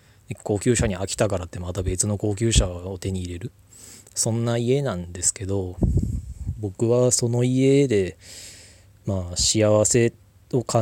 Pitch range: 95-120 Hz